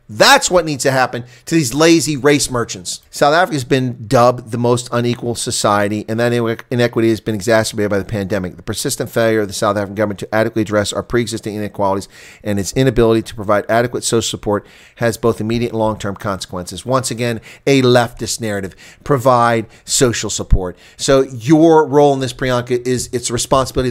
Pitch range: 115-160 Hz